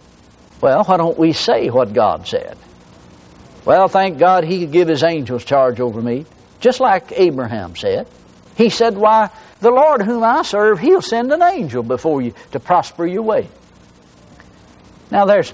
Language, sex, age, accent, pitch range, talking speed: English, male, 60-79, American, 145-200 Hz, 165 wpm